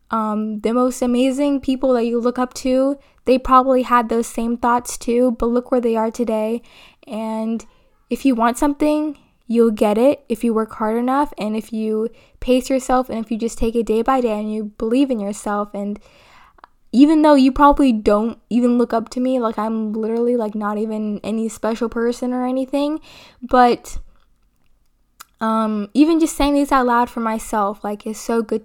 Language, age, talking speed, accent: English, 10-29, 190 wpm, American